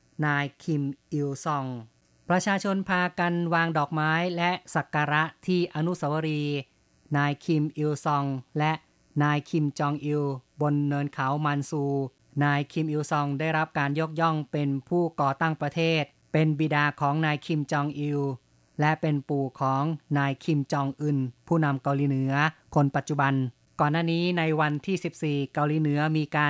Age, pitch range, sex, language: 20-39, 140-160 Hz, female, Thai